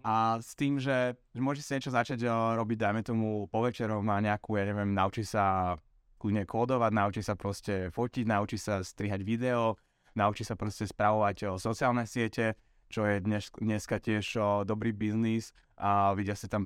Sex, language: male, Slovak